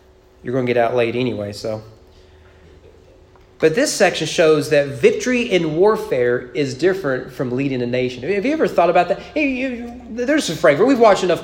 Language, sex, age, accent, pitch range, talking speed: English, male, 30-49, American, 135-220 Hz, 180 wpm